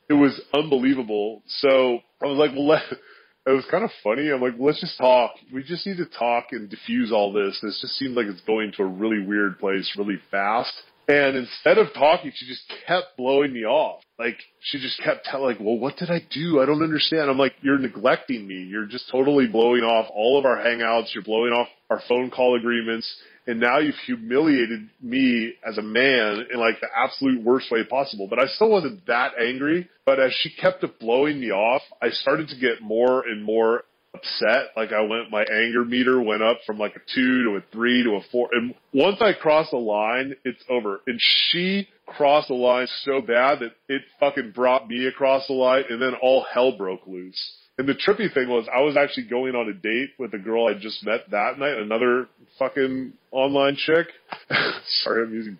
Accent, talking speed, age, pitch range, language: American, 210 wpm, 30-49, 115-140 Hz, English